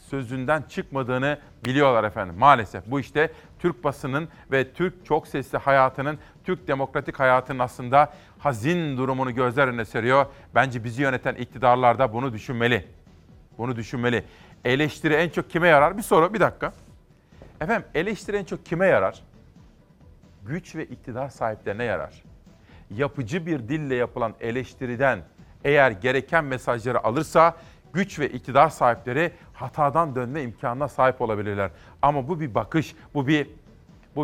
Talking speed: 135 wpm